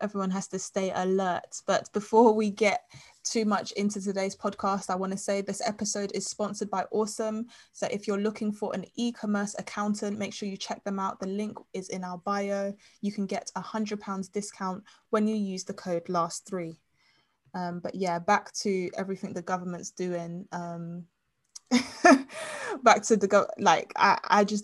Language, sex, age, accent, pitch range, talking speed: English, female, 20-39, British, 185-210 Hz, 185 wpm